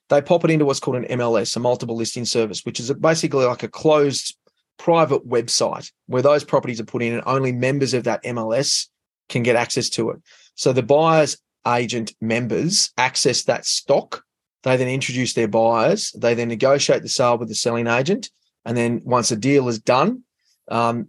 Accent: Australian